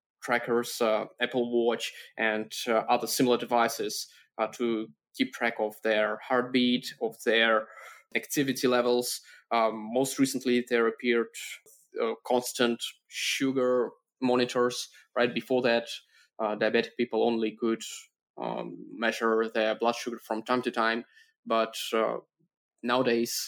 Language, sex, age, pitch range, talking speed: English, male, 20-39, 115-125 Hz, 125 wpm